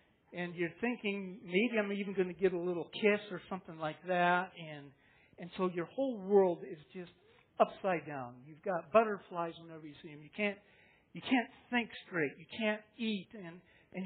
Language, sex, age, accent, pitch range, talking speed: English, male, 50-69, American, 150-210 Hz, 190 wpm